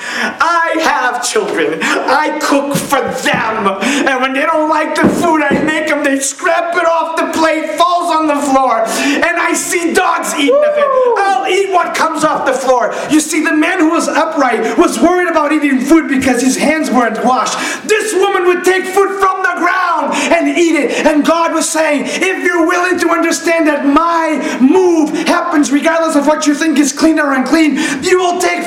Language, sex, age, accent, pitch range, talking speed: English, male, 30-49, American, 245-325 Hz, 195 wpm